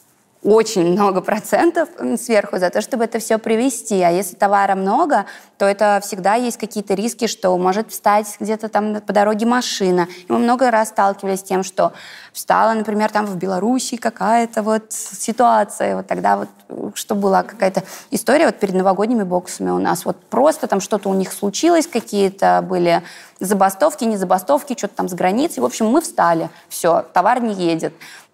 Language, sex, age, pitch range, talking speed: Russian, female, 20-39, 190-225 Hz, 170 wpm